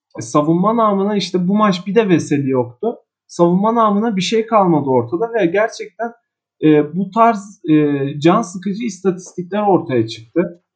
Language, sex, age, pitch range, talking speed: Turkish, male, 40-59, 150-195 Hz, 145 wpm